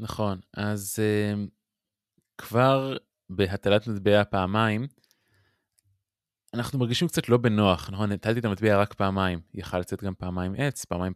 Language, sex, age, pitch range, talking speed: Hebrew, male, 20-39, 95-115 Hz, 135 wpm